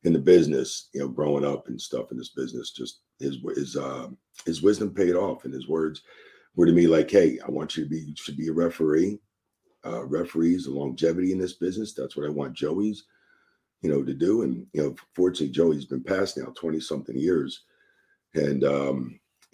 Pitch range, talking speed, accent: 80-110 Hz, 205 wpm, American